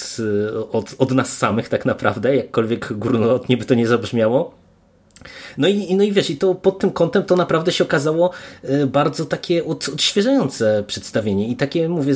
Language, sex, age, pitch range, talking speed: Polish, male, 30-49, 120-150 Hz, 160 wpm